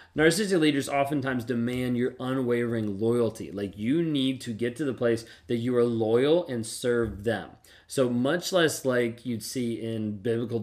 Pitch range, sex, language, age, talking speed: 110-130 Hz, male, English, 20-39, 170 wpm